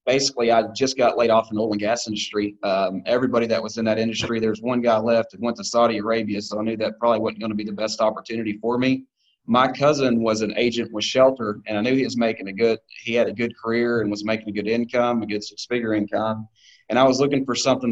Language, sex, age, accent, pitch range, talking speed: English, male, 30-49, American, 110-120 Hz, 260 wpm